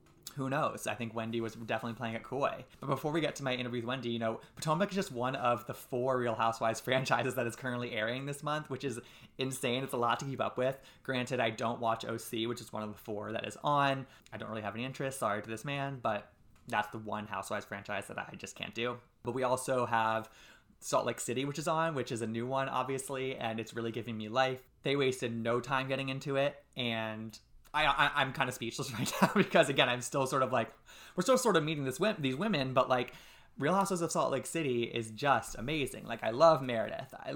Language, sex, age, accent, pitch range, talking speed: English, male, 20-39, American, 115-135 Hz, 245 wpm